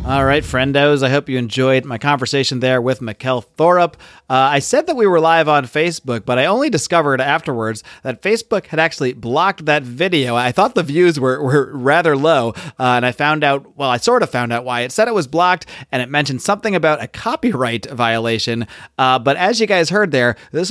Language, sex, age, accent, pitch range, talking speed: English, male, 30-49, American, 125-165 Hz, 215 wpm